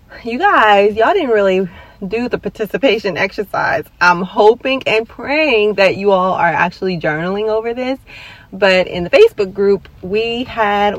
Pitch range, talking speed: 185-220 Hz, 155 wpm